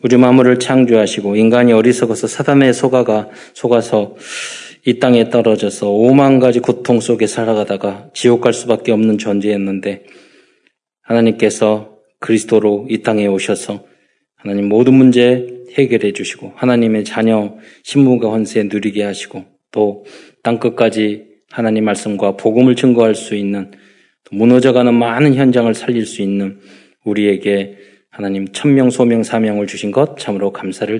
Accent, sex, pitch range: native, male, 100-125 Hz